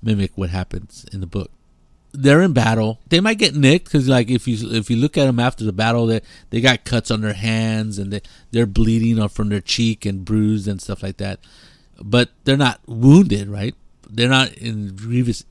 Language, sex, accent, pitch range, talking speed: English, male, American, 100-120 Hz, 220 wpm